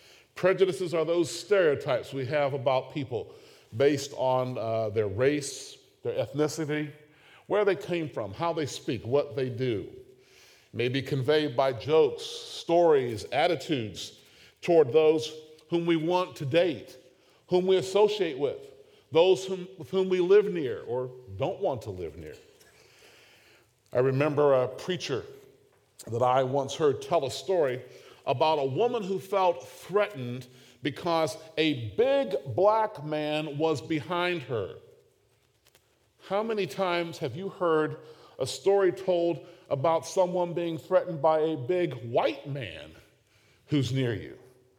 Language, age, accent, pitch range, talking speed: English, 50-69, American, 140-190 Hz, 140 wpm